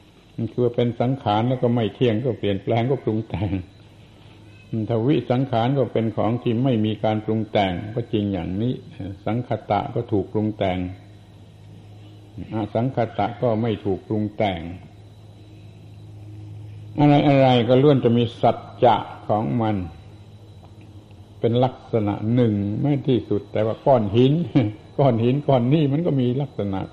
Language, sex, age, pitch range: Thai, male, 60-79, 100-120 Hz